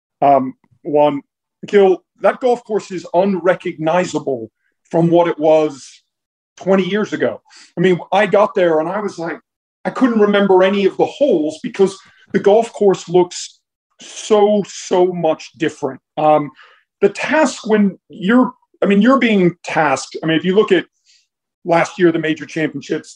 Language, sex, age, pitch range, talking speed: English, male, 40-59, 155-200 Hz, 160 wpm